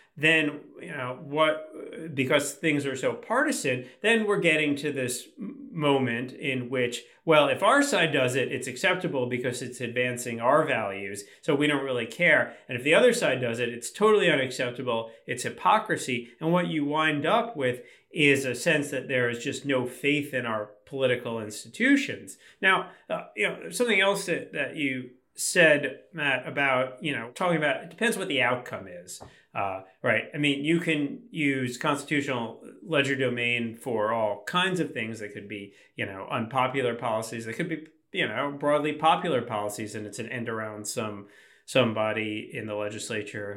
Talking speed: 175 wpm